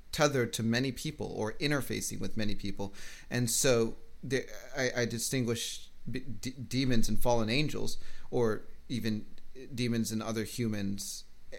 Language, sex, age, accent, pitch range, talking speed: English, male, 30-49, American, 110-130 Hz, 140 wpm